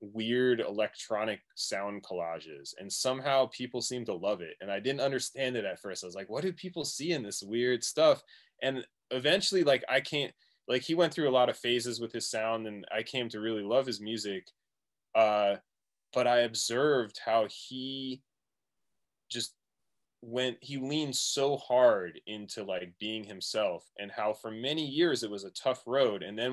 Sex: male